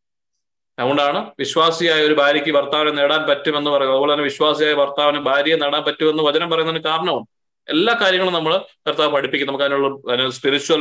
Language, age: Malayalam, 20-39